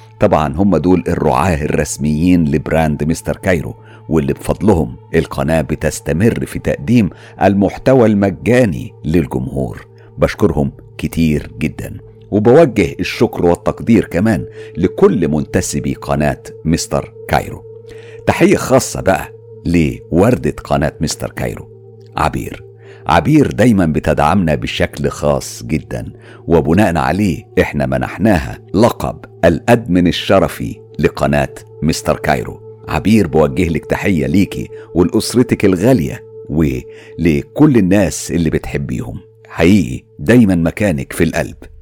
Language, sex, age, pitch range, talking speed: Arabic, male, 60-79, 75-110 Hz, 100 wpm